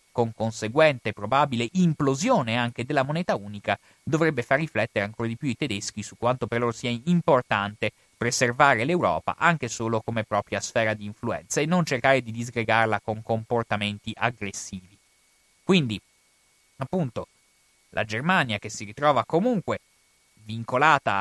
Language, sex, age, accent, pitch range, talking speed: Italian, male, 30-49, native, 110-155 Hz, 135 wpm